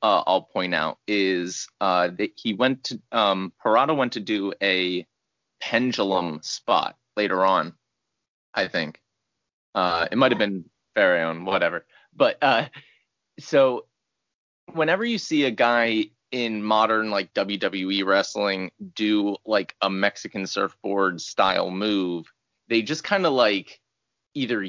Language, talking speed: English, 135 wpm